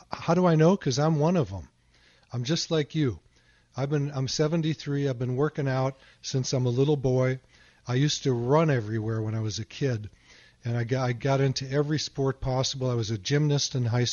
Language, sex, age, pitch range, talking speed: English, male, 40-59, 115-145 Hz, 215 wpm